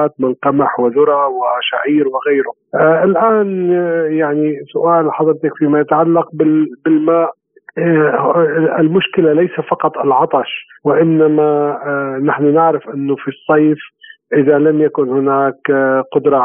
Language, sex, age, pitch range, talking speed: Arabic, male, 40-59, 135-155 Hz, 115 wpm